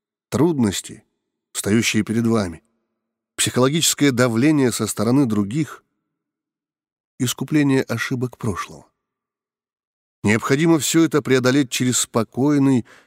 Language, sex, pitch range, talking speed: Russian, male, 105-145 Hz, 85 wpm